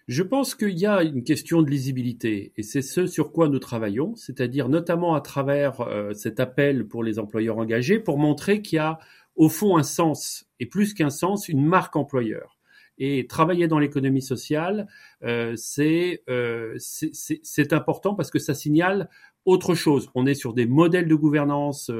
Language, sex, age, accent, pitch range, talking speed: French, male, 40-59, French, 120-160 Hz, 185 wpm